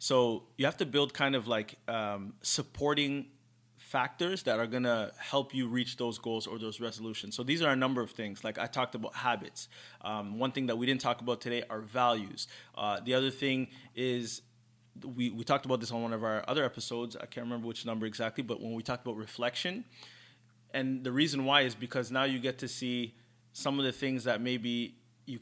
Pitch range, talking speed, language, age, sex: 115-140 Hz, 215 wpm, English, 30-49, male